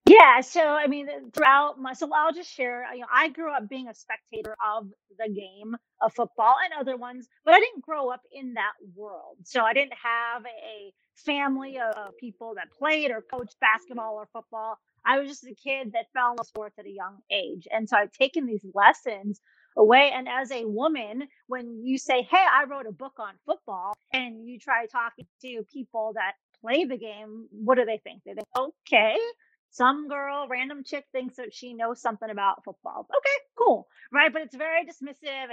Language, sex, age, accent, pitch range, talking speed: English, female, 30-49, American, 220-280 Hz, 200 wpm